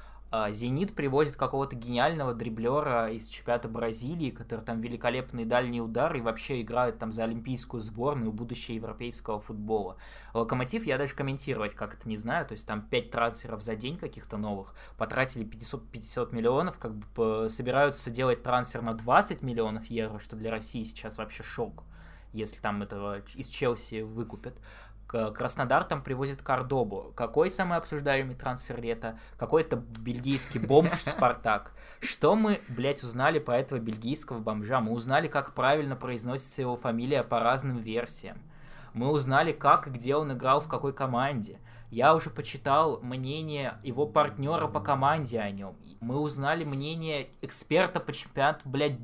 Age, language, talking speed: 20-39, Russian, 150 wpm